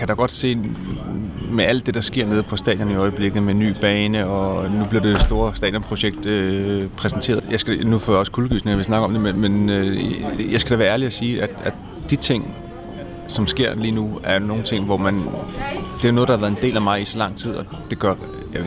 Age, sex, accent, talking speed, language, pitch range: 30-49, male, native, 250 wpm, Danish, 100-115 Hz